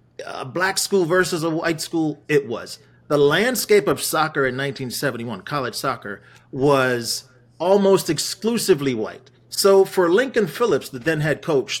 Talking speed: 145 wpm